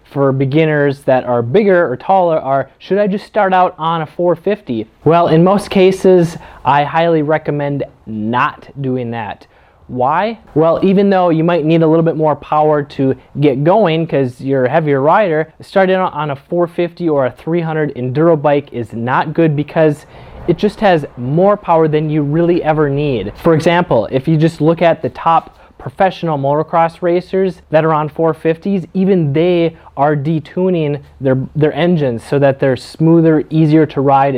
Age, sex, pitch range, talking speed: 20-39, male, 140-170 Hz, 175 wpm